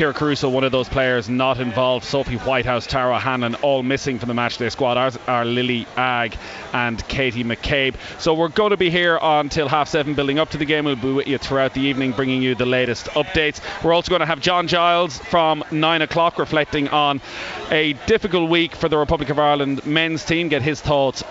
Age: 30-49